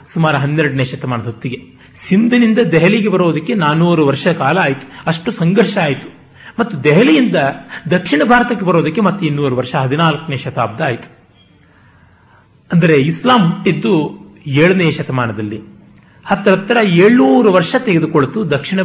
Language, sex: Kannada, male